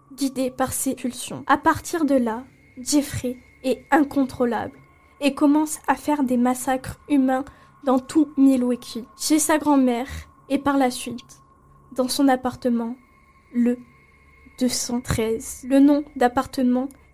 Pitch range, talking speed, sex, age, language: 250-290 Hz, 125 wpm, female, 10-29, French